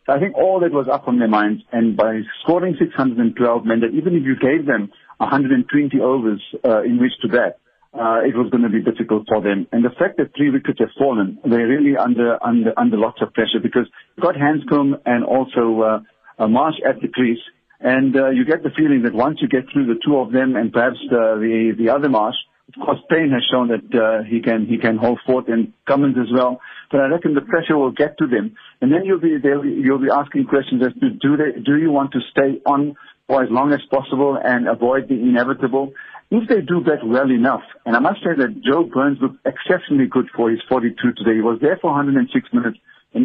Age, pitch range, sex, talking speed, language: 50-69, 120-150 Hz, male, 230 wpm, English